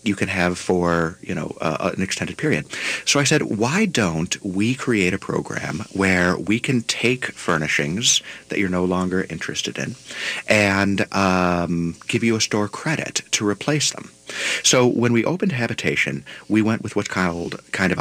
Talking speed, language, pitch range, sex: 175 wpm, English, 80-105 Hz, male